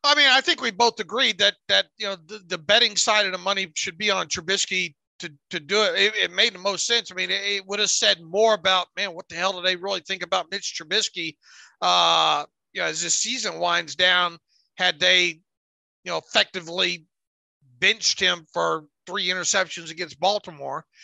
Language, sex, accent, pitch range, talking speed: English, male, American, 185-235 Hz, 205 wpm